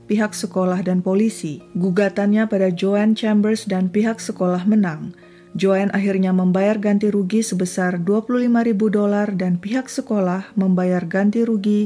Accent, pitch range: native, 185-215 Hz